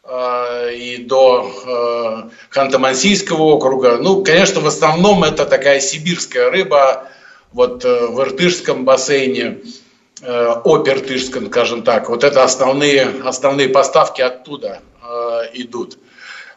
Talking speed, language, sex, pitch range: 95 wpm, Russian, male, 125-160 Hz